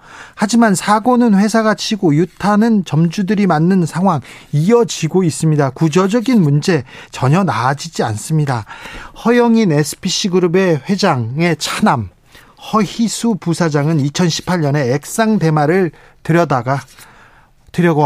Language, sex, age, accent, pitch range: Korean, male, 40-59, native, 145-195 Hz